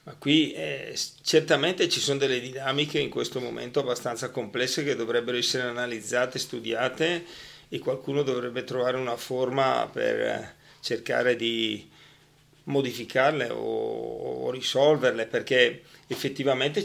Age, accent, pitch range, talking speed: 40-59, native, 120-140 Hz, 120 wpm